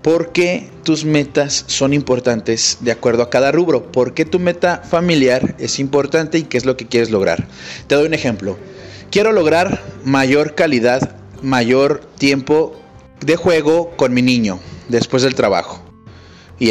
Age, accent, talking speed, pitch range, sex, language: 30-49, Mexican, 160 wpm, 120-165 Hz, male, Spanish